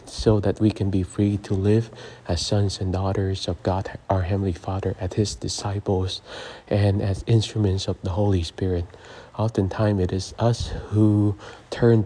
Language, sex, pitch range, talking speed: English, male, 95-105 Hz, 165 wpm